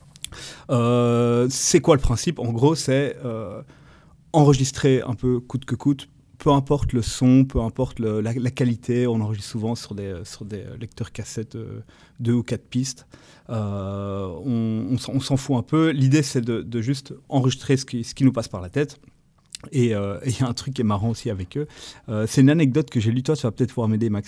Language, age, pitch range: French, 30-49, 110-135 Hz